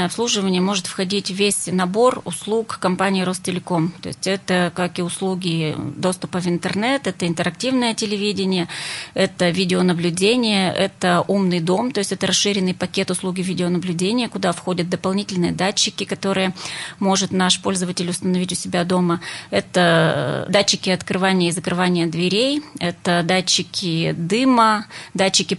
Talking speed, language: 125 wpm, Russian